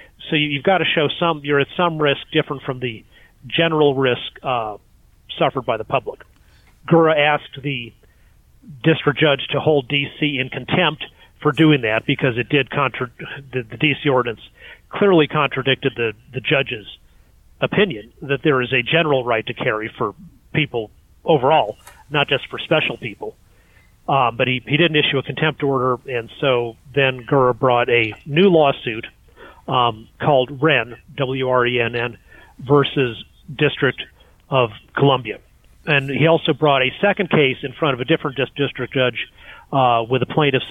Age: 40-59